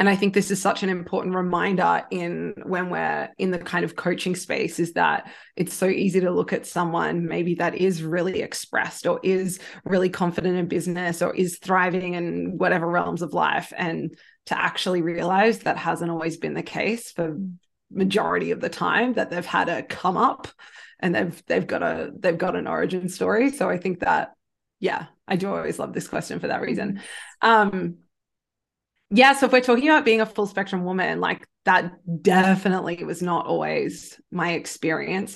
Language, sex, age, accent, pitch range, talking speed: English, female, 20-39, Australian, 175-195 Hz, 185 wpm